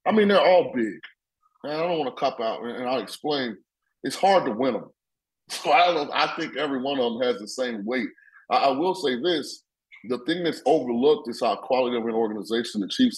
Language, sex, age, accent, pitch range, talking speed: English, male, 30-49, American, 115-150 Hz, 215 wpm